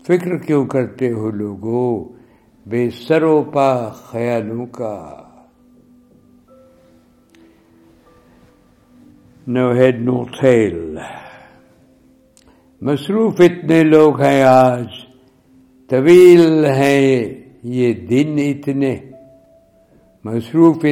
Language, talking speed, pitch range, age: Urdu, 55 wpm, 115-150 Hz, 60-79